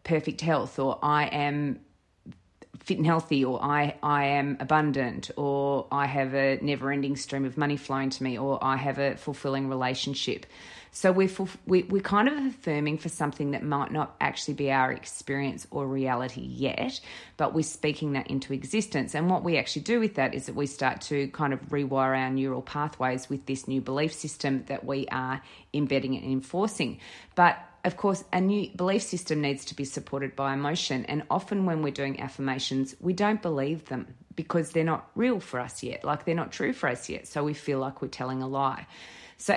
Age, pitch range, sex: 30-49, 135-160 Hz, female